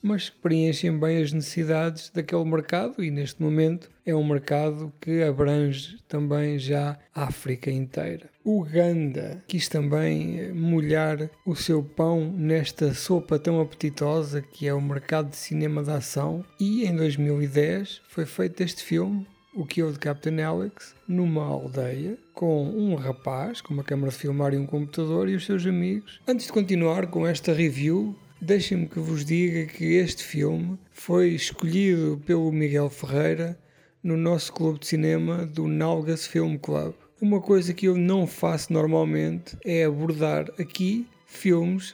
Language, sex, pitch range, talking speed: Portuguese, male, 150-175 Hz, 150 wpm